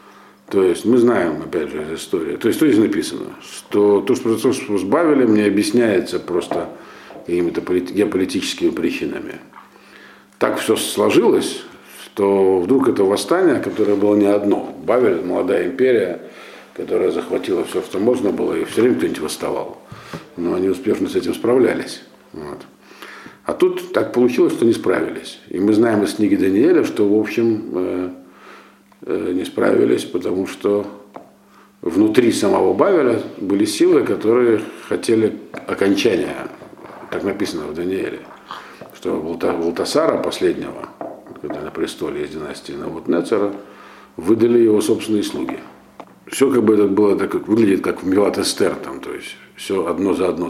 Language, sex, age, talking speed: Russian, male, 50-69, 135 wpm